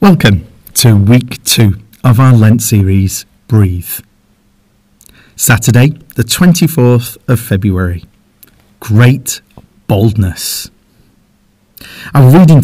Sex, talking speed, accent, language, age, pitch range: male, 85 wpm, British, English, 40-59, 105-140 Hz